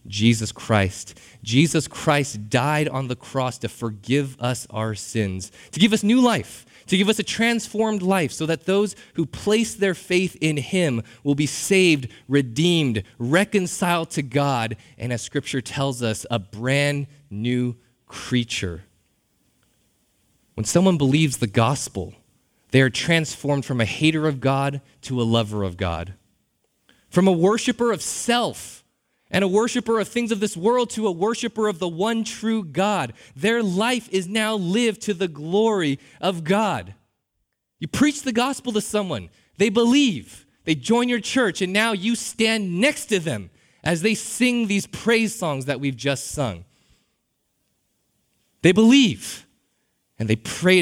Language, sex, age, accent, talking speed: English, male, 20-39, American, 155 wpm